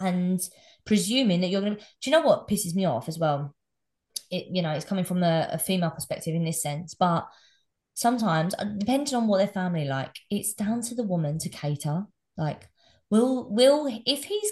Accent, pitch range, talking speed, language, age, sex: British, 160-235 Hz, 195 wpm, English, 20-39, female